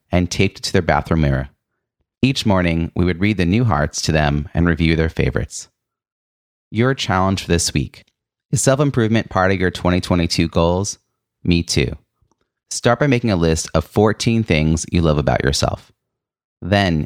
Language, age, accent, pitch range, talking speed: English, 30-49, American, 80-105 Hz, 170 wpm